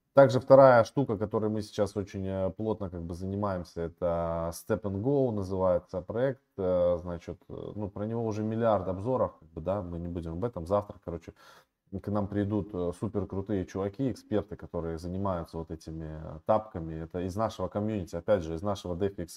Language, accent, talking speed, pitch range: Russian, native, 165 wpm, 90-110 Hz